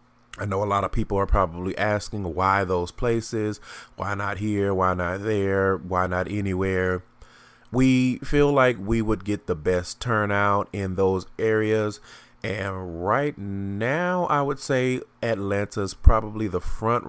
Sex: male